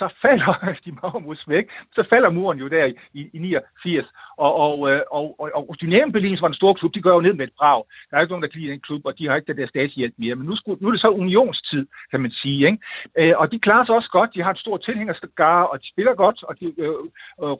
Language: Danish